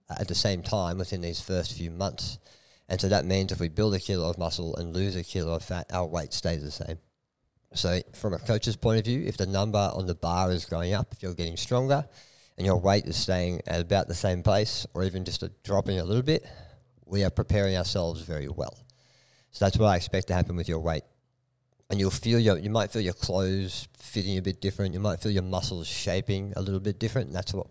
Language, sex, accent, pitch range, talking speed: English, male, Australian, 90-110 Hz, 240 wpm